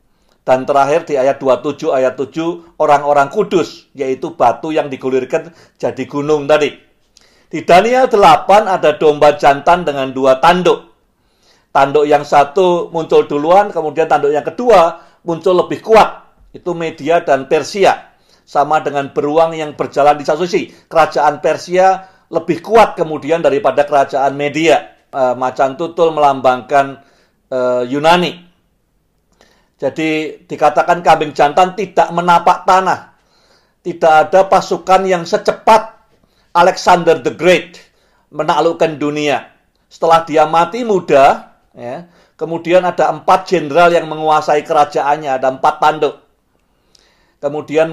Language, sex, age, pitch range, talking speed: Indonesian, male, 50-69, 145-175 Hz, 115 wpm